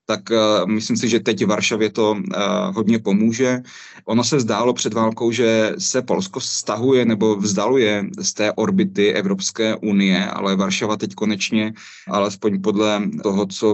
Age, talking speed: 30-49, 155 wpm